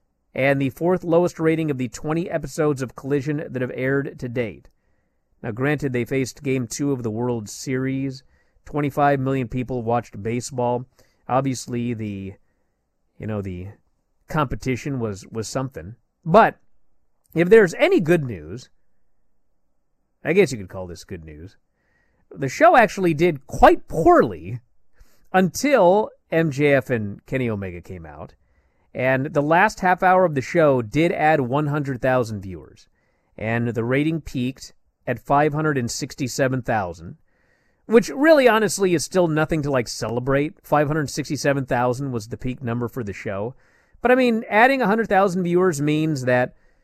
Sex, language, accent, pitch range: male, English, American, 120-160 Hz